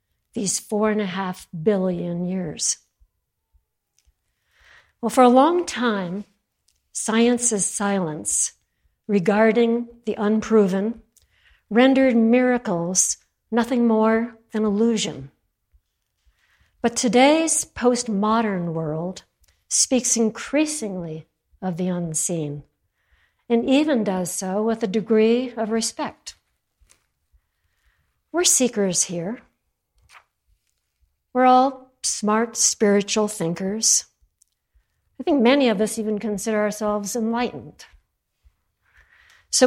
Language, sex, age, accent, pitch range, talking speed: English, female, 60-79, American, 190-245 Hz, 90 wpm